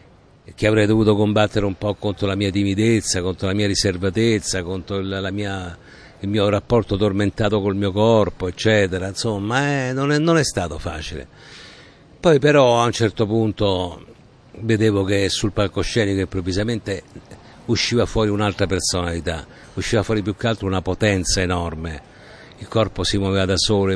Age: 50-69